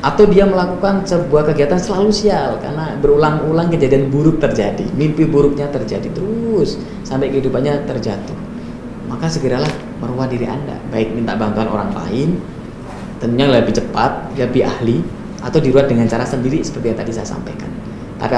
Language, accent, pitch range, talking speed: Indonesian, native, 115-150 Hz, 145 wpm